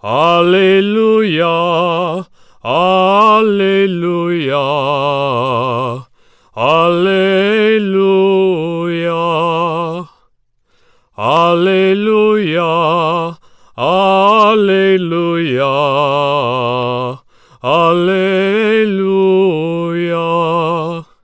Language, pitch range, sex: English, 145-190 Hz, male